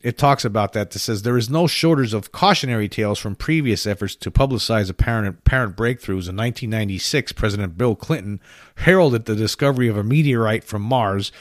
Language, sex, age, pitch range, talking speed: English, male, 40-59, 110-145 Hz, 180 wpm